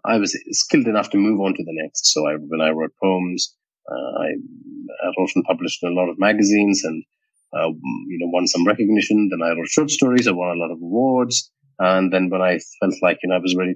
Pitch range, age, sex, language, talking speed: 90-110 Hz, 30-49, male, English, 240 wpm